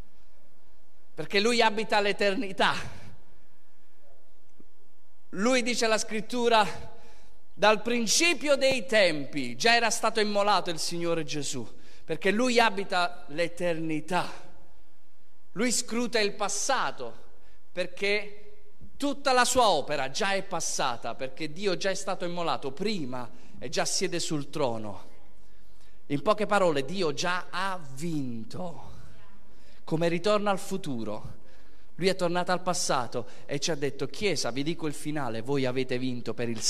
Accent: native